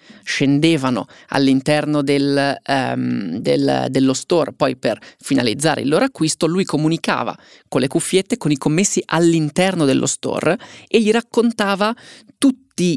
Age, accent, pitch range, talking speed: 20-39, native, 145-185 Hz, 130 wpm